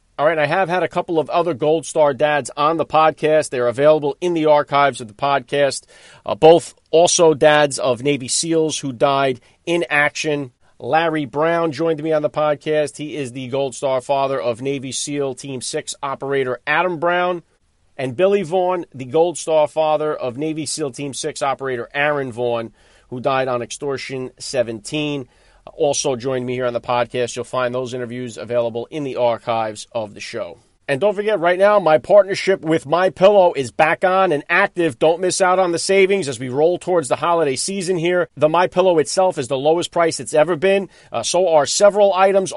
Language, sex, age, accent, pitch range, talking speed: English, male, 40-59, American, 135-175 Hz, 190 wpm